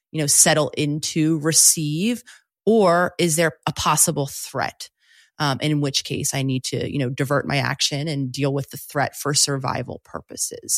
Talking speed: 180 wpm